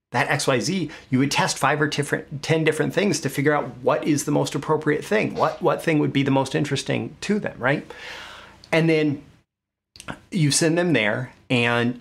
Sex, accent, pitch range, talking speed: male, American, 115-145 Hz, 200 wpm